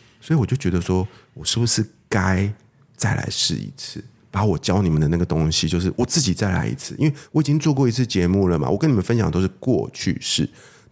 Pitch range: 85-115 Hz